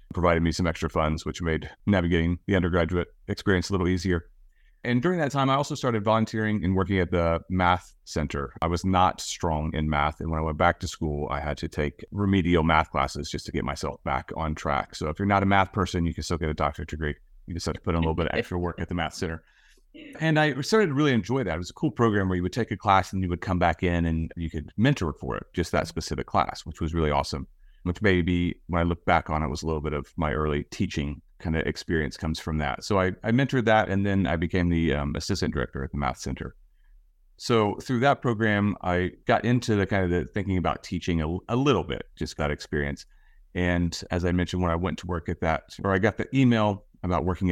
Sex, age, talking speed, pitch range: male, 30-49, 255 wpm, 80-105 Hz